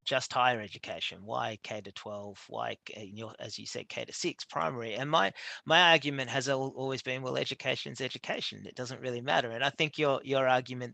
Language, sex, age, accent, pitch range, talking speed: English, male, 30-49, Australian, 105-135 Hz, 190 wpm